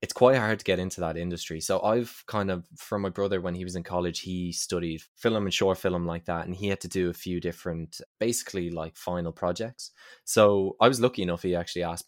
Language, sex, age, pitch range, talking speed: English, male, 20-39, 90-105 Hz, 240 wpm